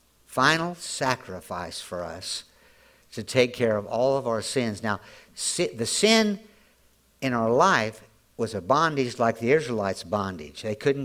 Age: 60-79